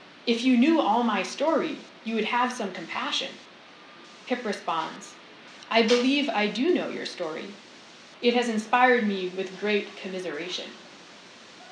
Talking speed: 140 wpm